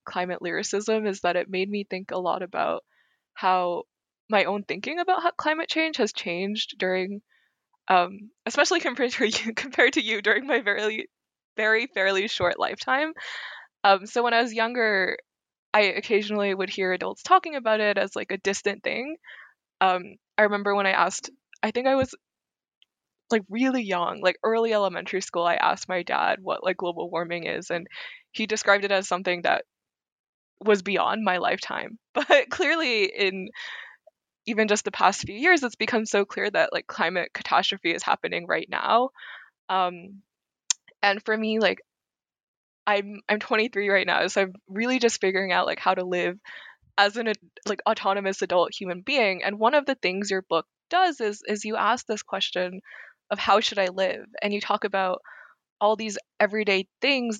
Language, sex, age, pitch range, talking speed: English, female, 20-39, 190-230 Hz, 175 wpm